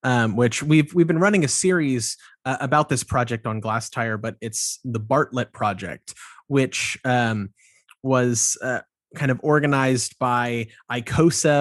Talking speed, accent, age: 150 wpm, American, 30-49